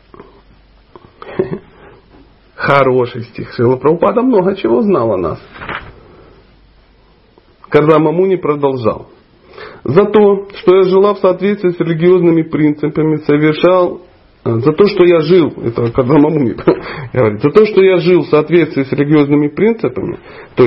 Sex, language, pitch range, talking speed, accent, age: male, Russian, 130-165 Hz, 115 wpm, native, 40-59